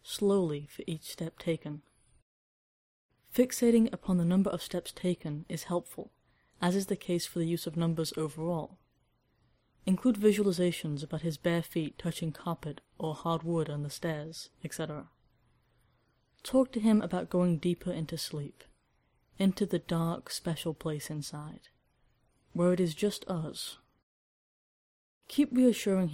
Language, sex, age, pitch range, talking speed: English, female, 20-39, 155-185 Hz, 140 wpm